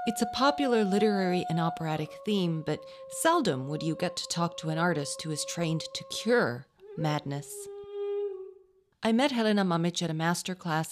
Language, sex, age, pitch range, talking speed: English, female, 40-59, 150-200 Hz, 165 wpm